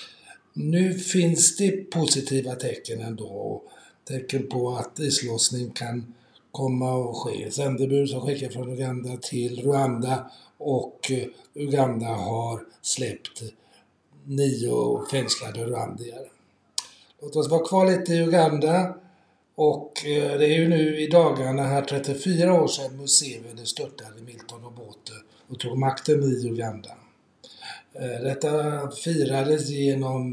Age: 60-79